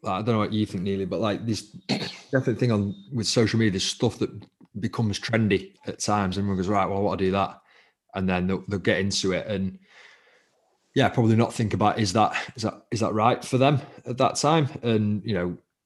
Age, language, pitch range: 20-39, English, 95-110 Hz